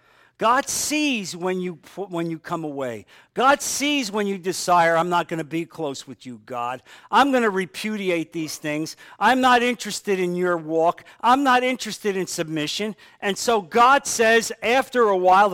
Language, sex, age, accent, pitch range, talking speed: English, male, 50-69, American, 155-205 Hz, 180 wpm